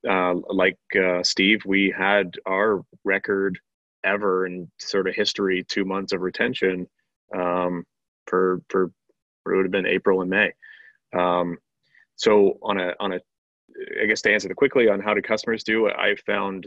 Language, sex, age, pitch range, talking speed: English, male, 30-49, 95-110 Hz, 160 wpm